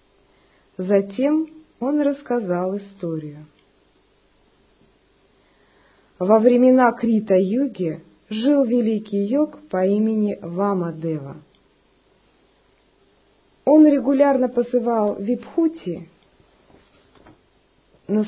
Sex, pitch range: female, 190-255 Hz